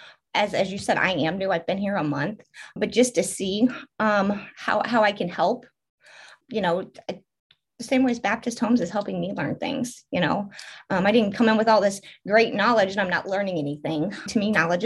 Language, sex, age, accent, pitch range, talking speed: English, female, 30-49, American, 190-225 Hz, 220 wpm